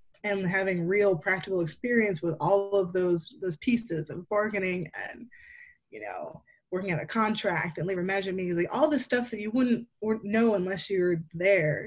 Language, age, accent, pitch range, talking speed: English, 20-39, American, 175-215 Hz, 180 wpm